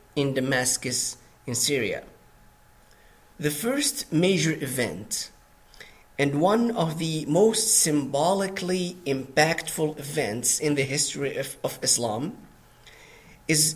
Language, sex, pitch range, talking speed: English, male, 130-175 Hz, 100 wpm